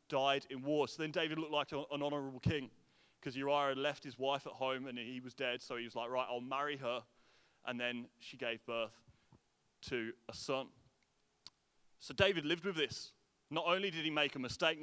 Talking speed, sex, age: 205 wpm, male, 30-49